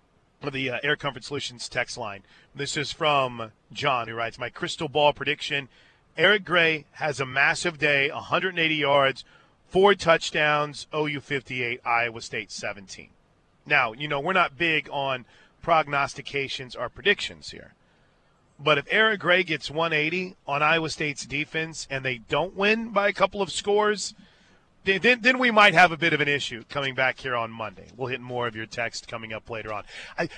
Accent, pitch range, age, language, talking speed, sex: American, 135-185 Hz, 40-59, English, 170 wpm, male